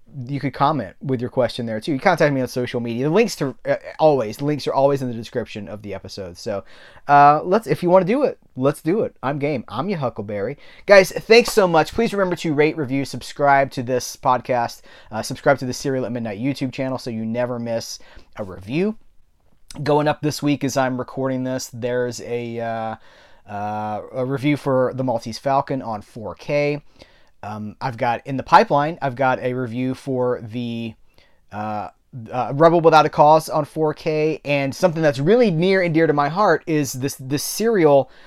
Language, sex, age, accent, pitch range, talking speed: English, male, 30-49, American, 125-155 Hz, 200 wpm